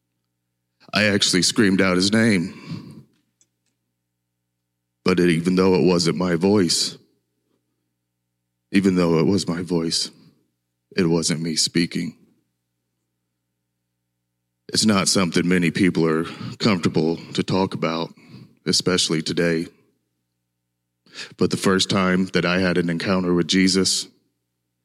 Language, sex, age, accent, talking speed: English, male, 30-49, American, 110 wpm